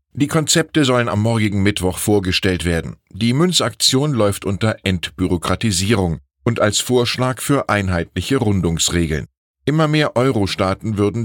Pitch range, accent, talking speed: 85-115 Hz, German, 125 wpm